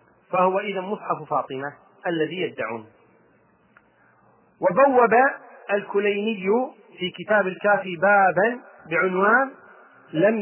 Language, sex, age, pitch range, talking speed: Arabic, male, 40-59, 190-225 Hz, 80 wpm